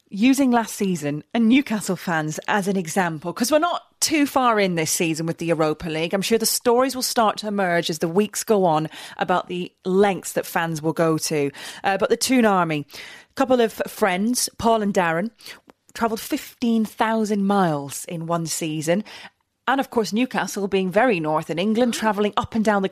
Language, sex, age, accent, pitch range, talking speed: English, female, 30-49, British, 185-240 Hz, 195 wpm